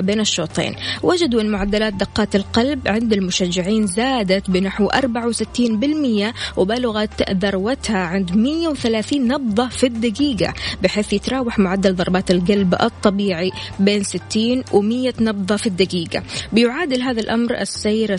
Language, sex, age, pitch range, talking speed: Arabic, female, 20-39, 195-250 Hz, 115 wpm